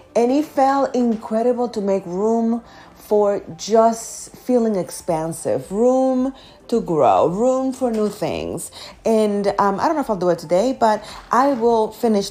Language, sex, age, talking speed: English, female, 30-49, 155 wpm